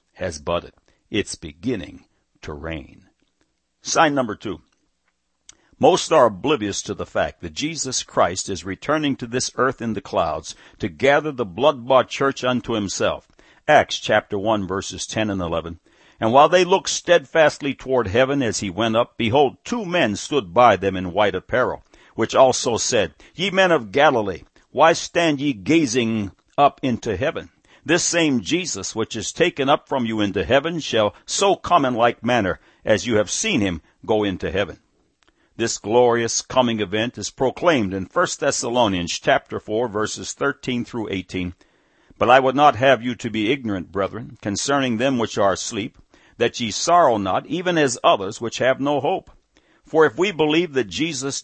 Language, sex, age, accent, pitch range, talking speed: English, male, 60-79, American, 105-145 Hz, 170 wpm